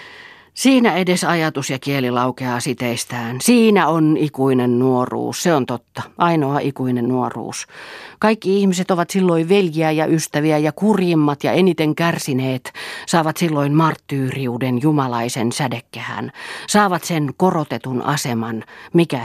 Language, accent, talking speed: Finnish, native, 120 wpm